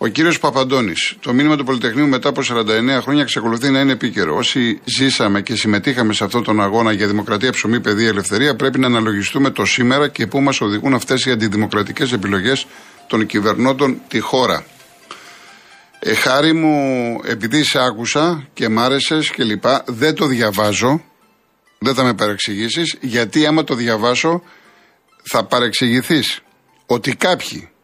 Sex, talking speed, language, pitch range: male, 145 wpm, Greek, 115-140 Hz